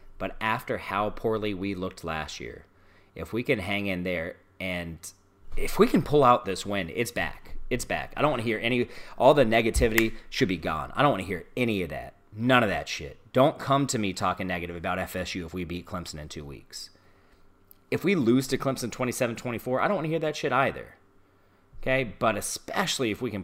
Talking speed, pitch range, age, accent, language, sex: 220 wpm, 90-125 Hz, 30-49, American, English, male